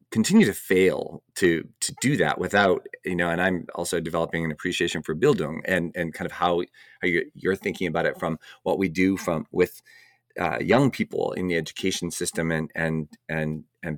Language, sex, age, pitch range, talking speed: English, male, 40-59, 85-120 Hz, 200 wpm